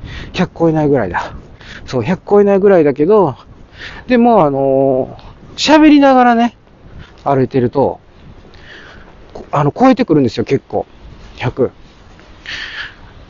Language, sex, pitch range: Japanese, male, 115-170 Hz